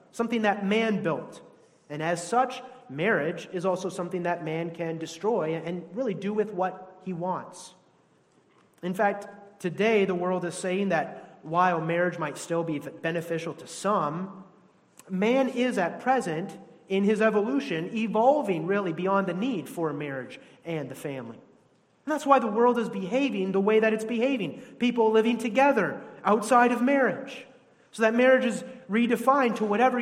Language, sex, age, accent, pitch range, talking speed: English, male, 30-49, American, 175-240 Hz, 160 wpm